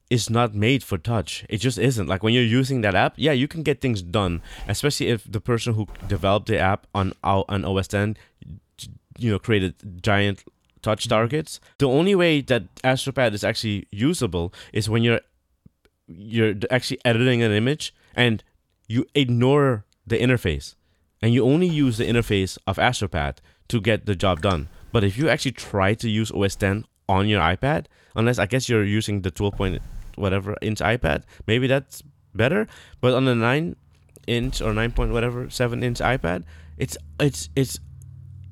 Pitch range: 95-125 Hz